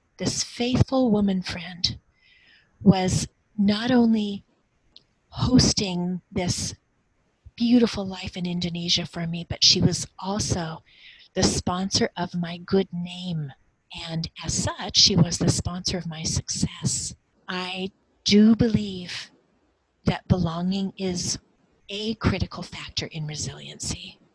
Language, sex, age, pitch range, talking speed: English, female, 40-59, 170-210 Hz, 115 wpm